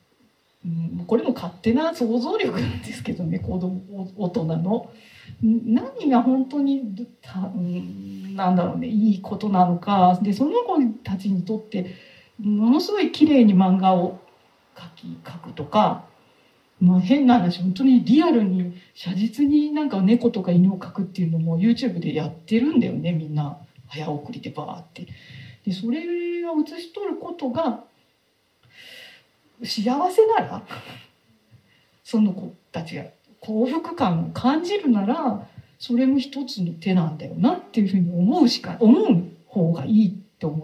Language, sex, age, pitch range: Japanese, female, 40-59, 180-260 Hz